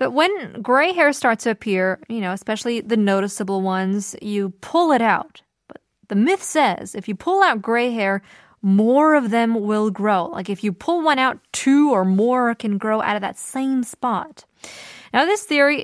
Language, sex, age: Korean, female, 20-39